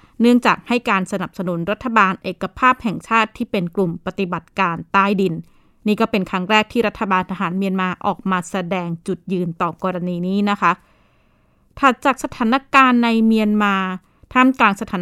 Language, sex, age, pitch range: Thai, female, 20-39, 190-240 Hz